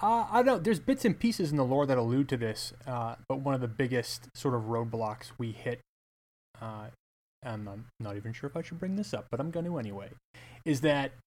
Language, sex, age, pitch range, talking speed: English, male, 30-49, 115-140 Hz, 240 wpm